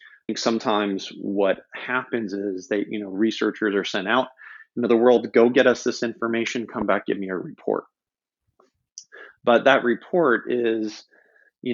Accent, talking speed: American, 165 wpm